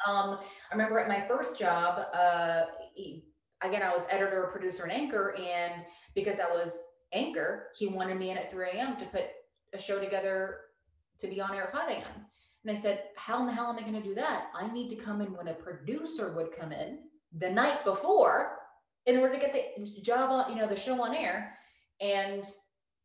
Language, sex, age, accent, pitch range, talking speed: English, female, 20-39, American, 180-240 Hz, 210 wpm